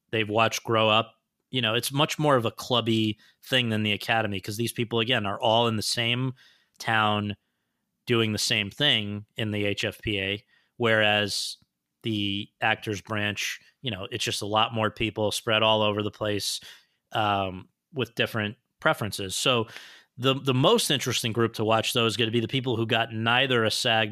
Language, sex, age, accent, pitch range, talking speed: English, male, 30-49, American, 105-125 Hz, 185 wpm